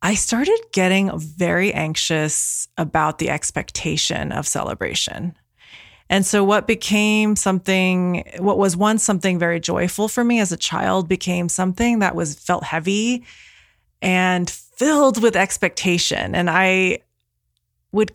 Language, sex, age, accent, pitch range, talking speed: English, female, 20-39, American, 165-210 Hz, 130 wpm